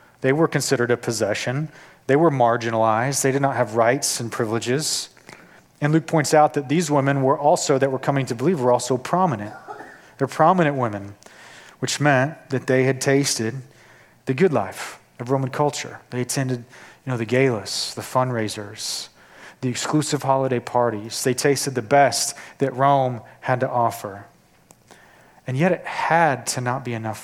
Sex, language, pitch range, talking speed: male, English, 120-145 Hz, 165 wpm